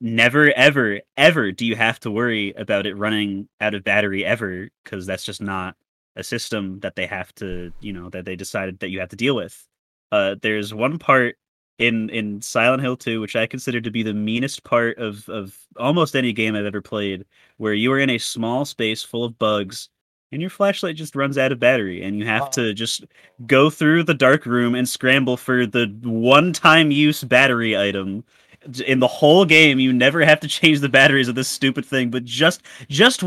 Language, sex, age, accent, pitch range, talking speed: English, male, 20-39, American, 100-135 Hz, 210 wpm